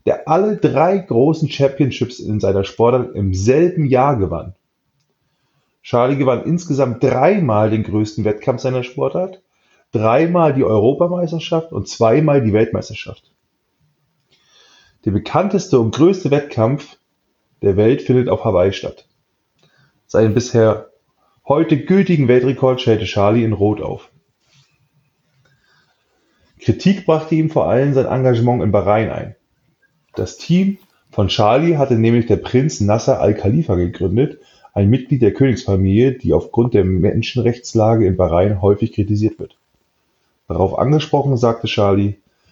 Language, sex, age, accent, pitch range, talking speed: German, male, 30-49, German, 105-145 Hz, 125 wpm